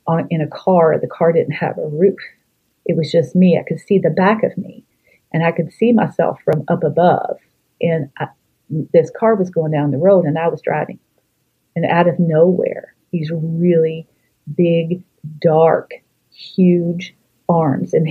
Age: 40-59